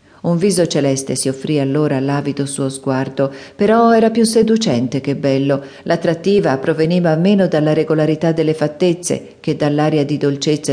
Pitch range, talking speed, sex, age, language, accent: 145-180 Hz, 145 wpm, female, 40-59, Italian, native